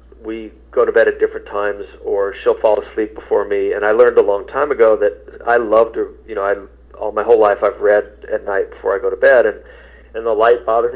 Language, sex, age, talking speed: English, male, 40-59, 245 wpm